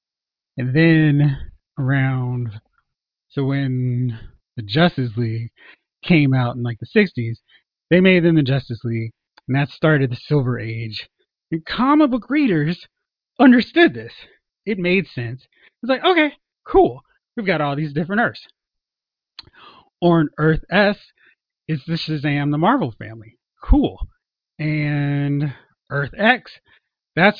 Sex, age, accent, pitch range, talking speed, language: male, 30-49, American, 130-195 Hz, 130 wpm, English